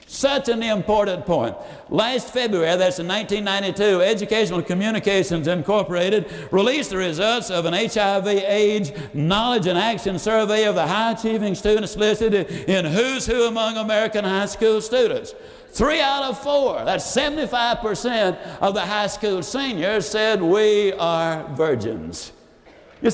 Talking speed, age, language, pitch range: 130 wpm, 60-79, English, 190-235 Hz